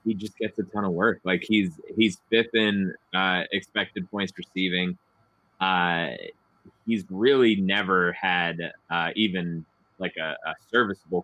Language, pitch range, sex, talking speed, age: English, 90-100 Hz, male, 145 wpm, 20-39